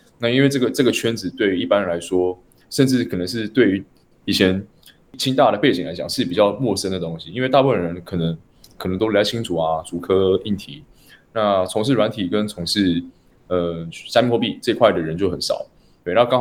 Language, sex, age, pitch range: Chinese, male, 20-39, 90-115 Hz